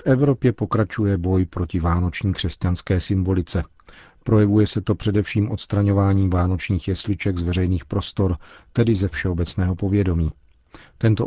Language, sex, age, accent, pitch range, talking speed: Czech, male, 40-59, native, 90-105 Hz, 125 wpm